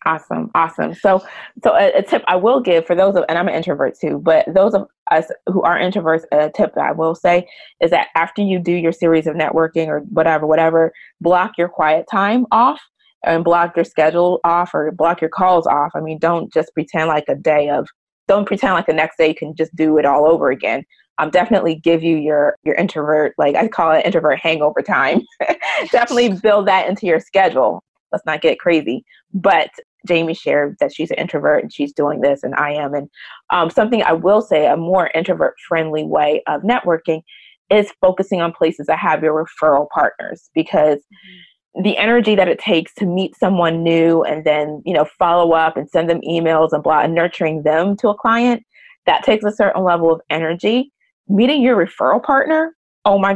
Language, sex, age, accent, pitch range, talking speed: English, female, 20-39, American, 160-200 Hz, 205 wpm